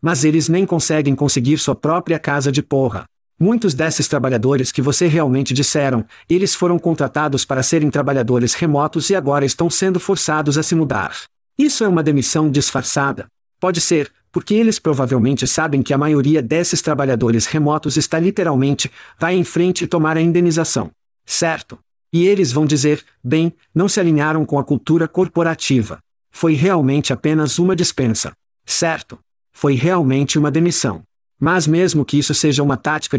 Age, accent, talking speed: 50-69, Brazilian, 160 wpm